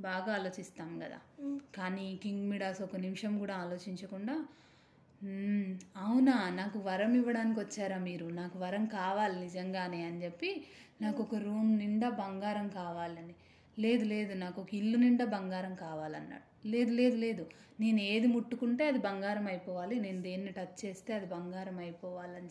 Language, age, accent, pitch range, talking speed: Telugu, 20-39, native, 185-235 Hz, 140 wpm